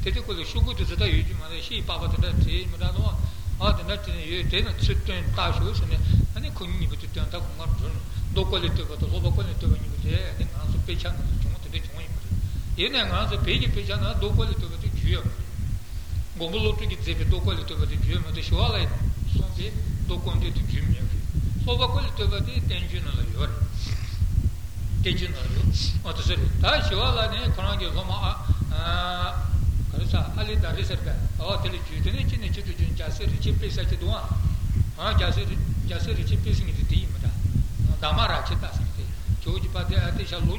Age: 60-79